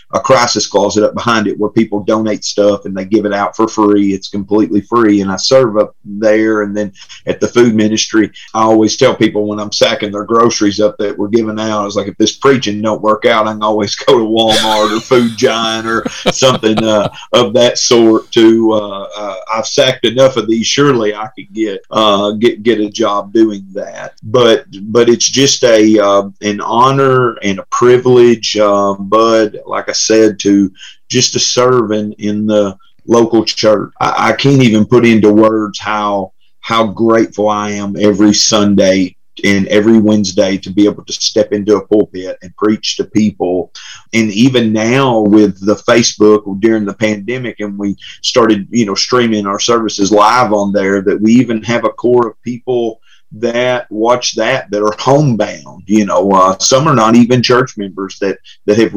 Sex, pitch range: male, 105-115 Hz